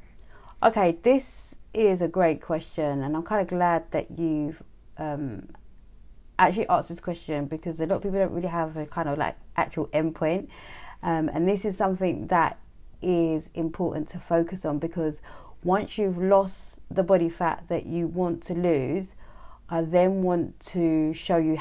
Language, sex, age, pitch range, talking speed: English, female, 30-49, 155-180 Hz, 170 wpm